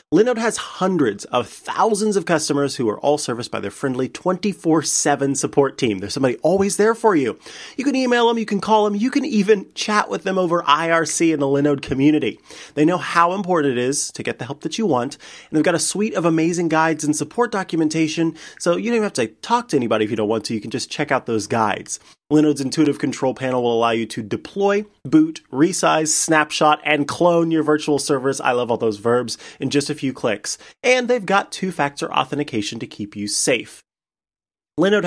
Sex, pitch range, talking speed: male, 140-195 Hz, 210 wpm